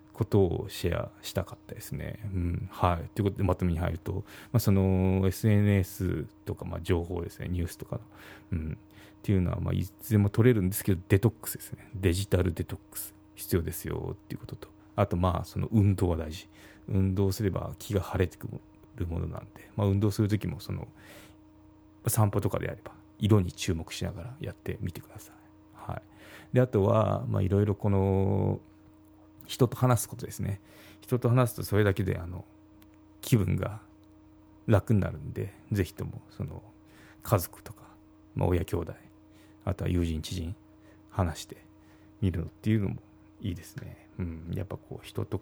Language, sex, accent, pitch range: Japanese, male, native, 95-105 Hz